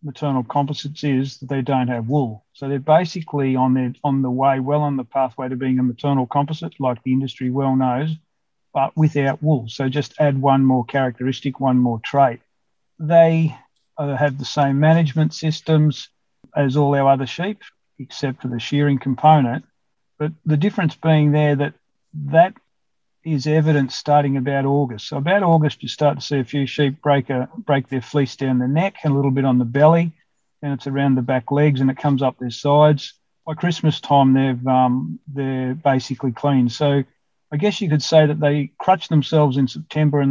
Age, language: 50-69, English